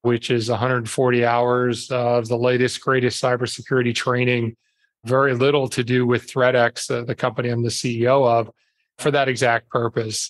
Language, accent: English, American